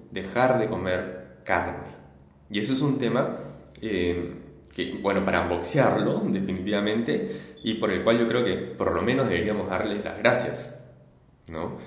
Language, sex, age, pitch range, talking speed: Spanish, male, 20-39, 90-125 Hz, 150 wpm